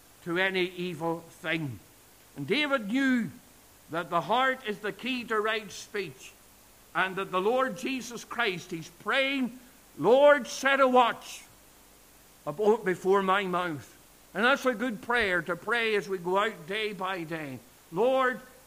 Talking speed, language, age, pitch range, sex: 150 wpm, English, 60-79, 175-235 Hz, male